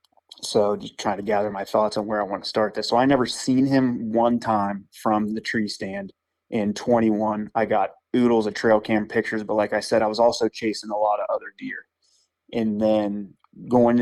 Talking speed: 215 wpm